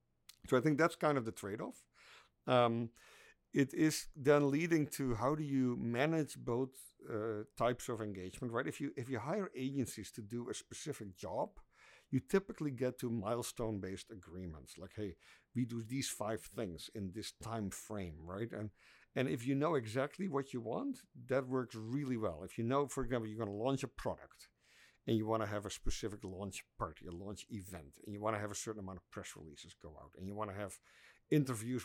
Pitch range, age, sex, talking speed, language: 100-130 Hz, 50-69, male, 205 wpm, English